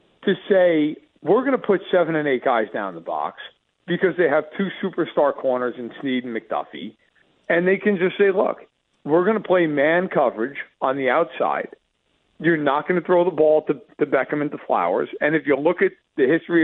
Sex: male